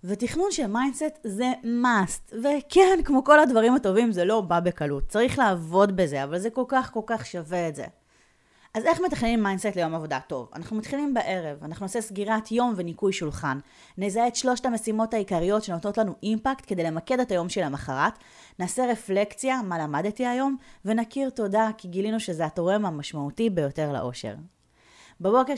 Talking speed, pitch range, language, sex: 165 wpm, 170-245 Hz, Hebrew, female